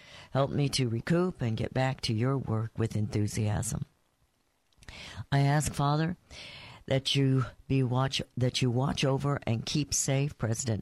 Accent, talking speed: American, 150 wpm